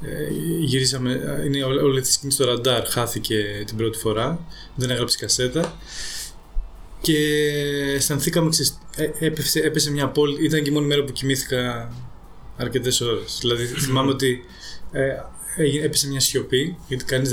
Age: 20-39